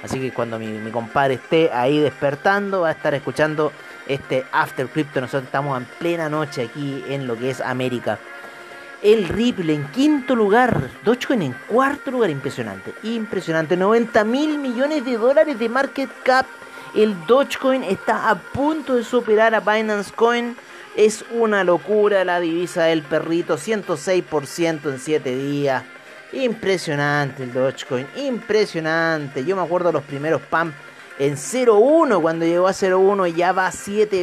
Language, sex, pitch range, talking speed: Spanish, male, 145-195 Hz, 155 wpm